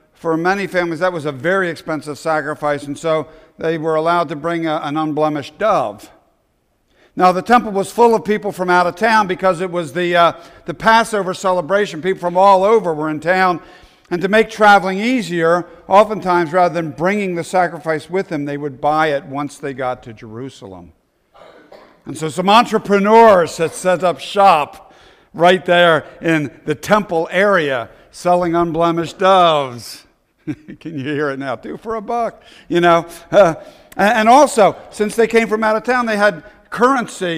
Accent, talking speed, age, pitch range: American, 175 wpm, 60-79, 155-200 Hz